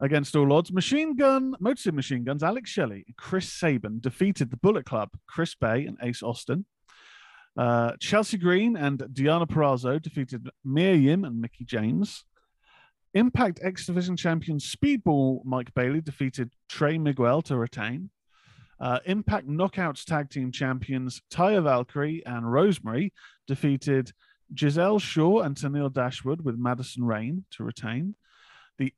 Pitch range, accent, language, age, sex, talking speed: 130-180 Hz, British, English, 40-59, male, 140 wpm